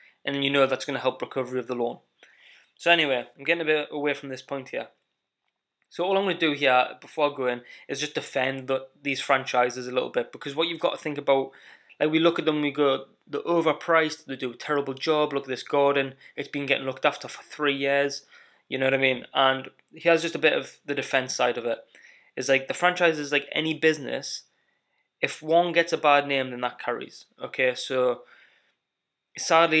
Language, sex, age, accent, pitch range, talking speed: English, male, 20-39, British, 130-155 Hz, 220 wpm